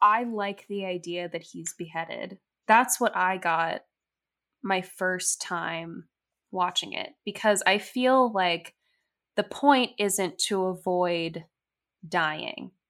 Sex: female